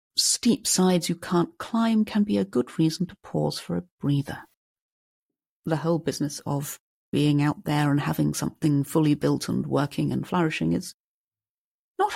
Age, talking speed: 40-59, 165 wpm